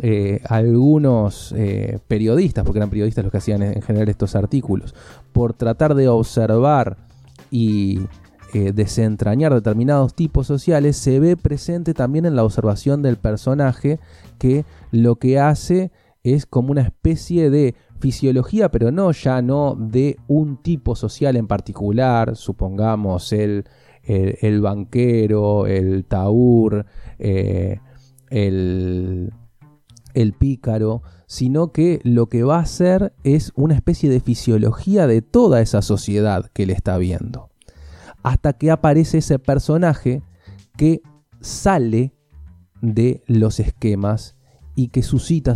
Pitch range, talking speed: 105-140 Hz, 125 wpm